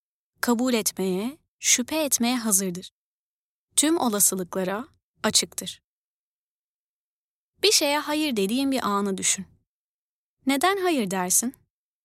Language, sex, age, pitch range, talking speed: Turkish, female, 20-39, 205-290 Hz, 90 wpm